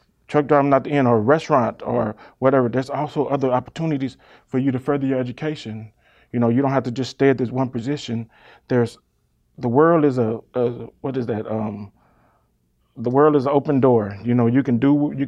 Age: 30-49